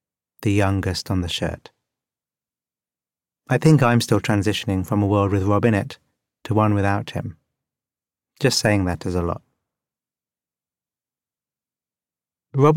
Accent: British